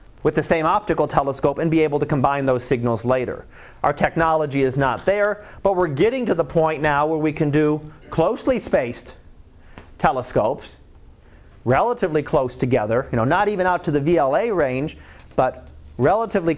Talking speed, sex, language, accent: 165 wpm, male, English, American